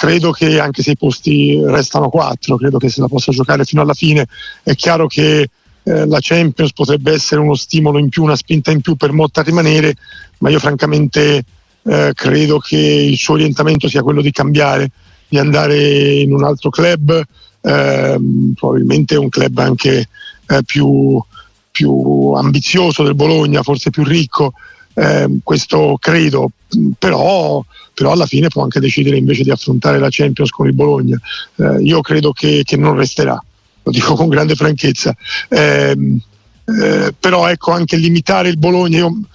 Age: 50-69